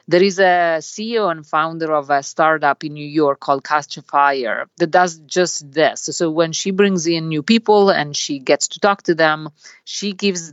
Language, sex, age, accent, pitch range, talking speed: English, female, 50-69, Italian, 150-190 Hz, 195 wpm